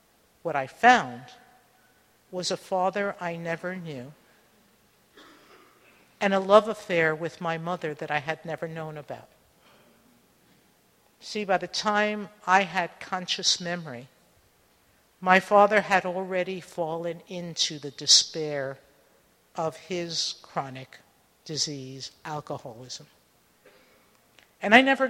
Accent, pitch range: American, 150-195 Hz